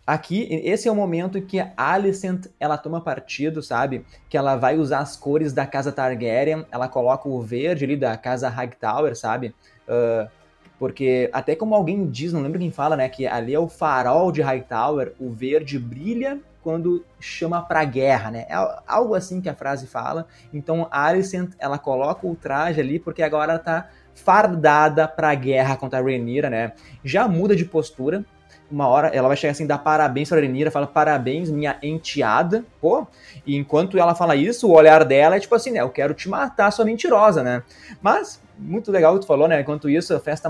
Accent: Brazilian